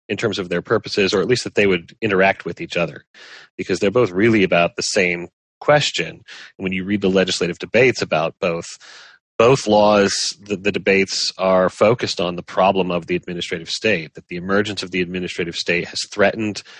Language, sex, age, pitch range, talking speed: English, male, 30-49, 90-105 Hz, 195 wpm